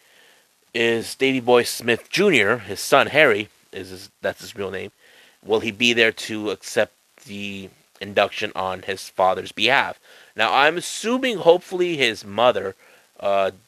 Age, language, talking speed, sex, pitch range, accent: 30-49, English, 145 wpm, male, 95-110 Hz, American